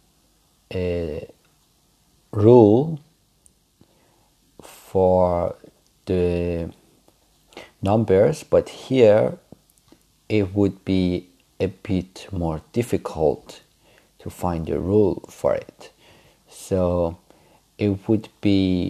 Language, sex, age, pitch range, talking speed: Persian, male, 50-69, 90-100 Hz, 75 wpm